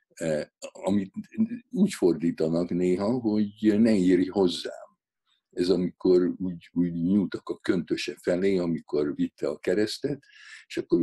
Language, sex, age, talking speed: Hungarian, male, 60-79, 120 wpm